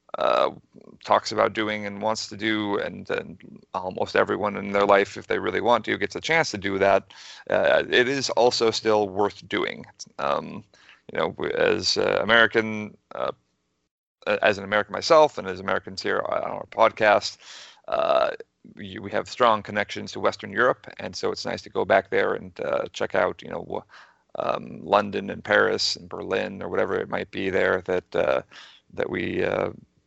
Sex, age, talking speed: male, 30-49, 180 wpm